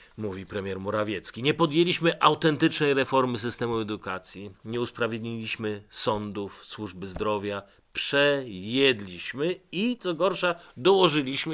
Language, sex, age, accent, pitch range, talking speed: Polish, male, 40-59, native, 105-150 Hz, 100 wpm